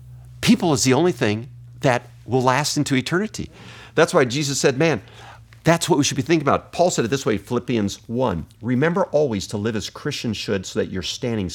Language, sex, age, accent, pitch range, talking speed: English, male, 50-69, American, 100-140 Hz, 210 wpm